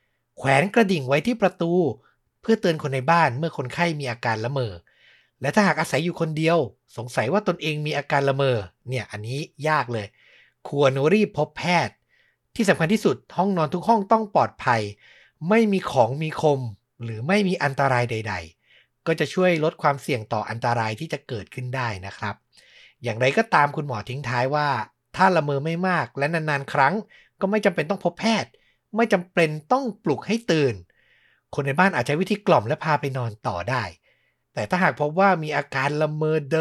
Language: Thai